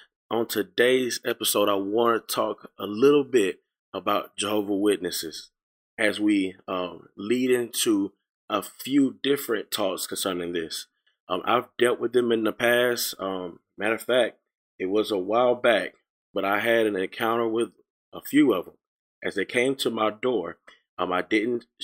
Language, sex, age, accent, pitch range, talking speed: English, male, 20-39, American, 95-120 Hz, 165 wpm